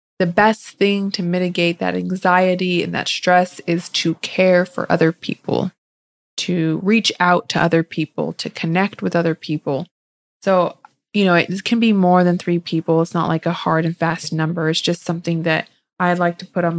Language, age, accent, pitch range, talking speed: English, 20-39, American, 165-185 Hz, 195 wpm